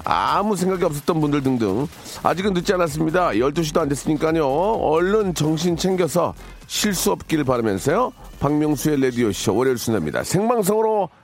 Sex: male